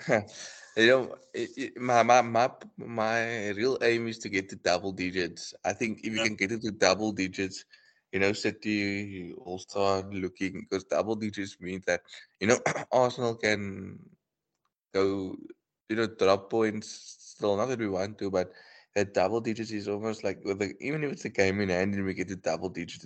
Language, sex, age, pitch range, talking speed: English, male, 20-39, 95-115 Hz, 185 wpm